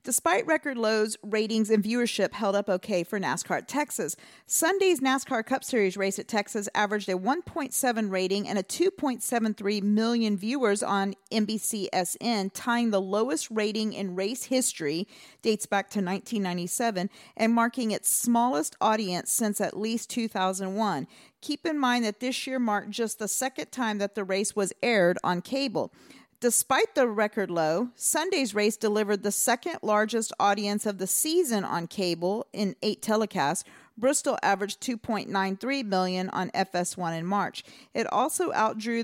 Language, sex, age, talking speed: English, female, 40-59, 150 wpm